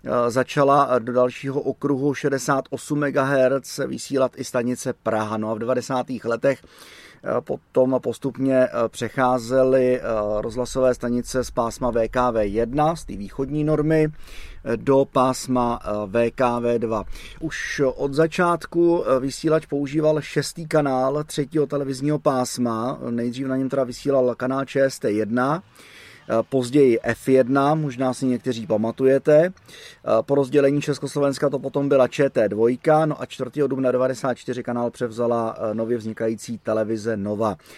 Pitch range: 120-145 Hz